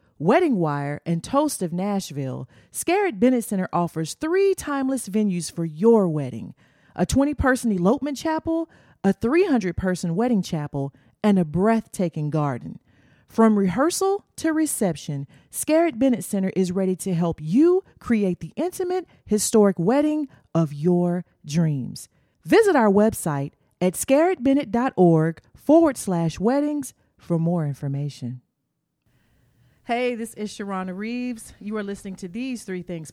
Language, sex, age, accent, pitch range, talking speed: English, female, 30-49, American, 170-225 Hz, 130 wpm